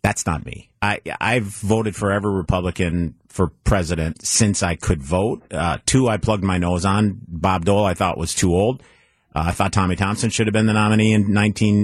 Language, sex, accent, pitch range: English, male, American, 95-120 Hz